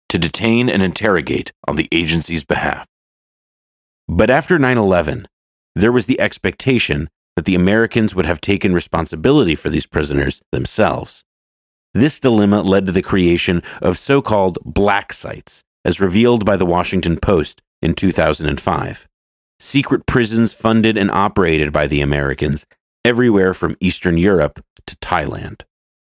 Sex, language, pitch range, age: male, English, 85-115 Hz, 40-59